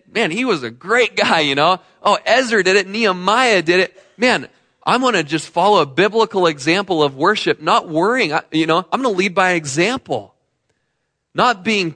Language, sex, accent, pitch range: English, male, American, 135-185 Hz